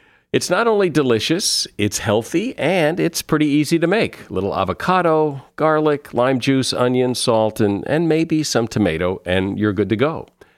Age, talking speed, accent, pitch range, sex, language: 50-69, 170 wpm, American, 105-140 Hz, male, English